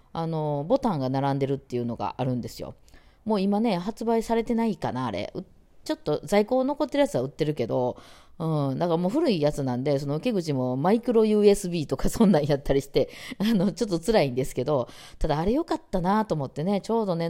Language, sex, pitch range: Japanese, female, 130-205 Hz